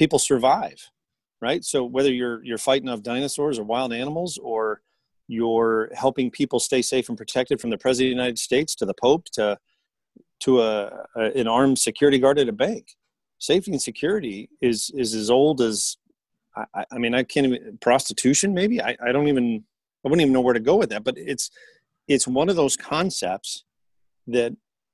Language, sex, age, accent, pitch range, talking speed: English, male, 40-59, American, 115-140 Hz, 190 wpm